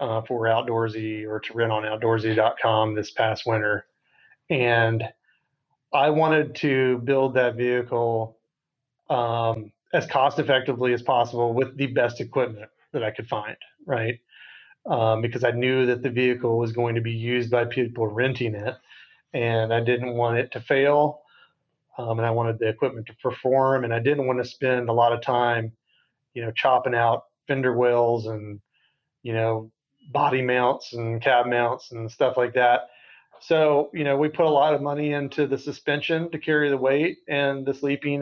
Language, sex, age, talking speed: English, male, 30-49, 175 wpm